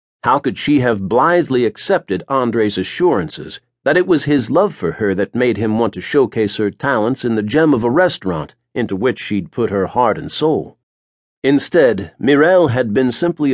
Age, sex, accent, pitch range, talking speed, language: 50-69, male, American, 105-140 Hz, 185 wpm, English